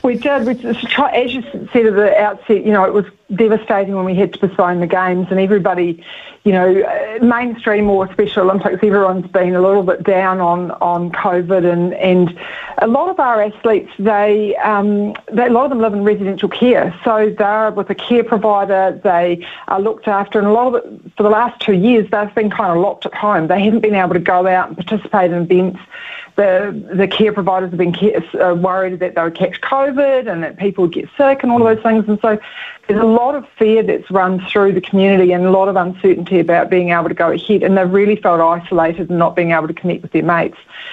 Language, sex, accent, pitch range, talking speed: English, female, Australian, 185-215 Hz, 225 wpm